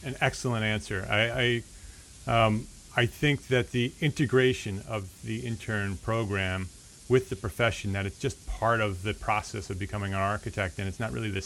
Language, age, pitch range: English, 30-49, 100-125 Hz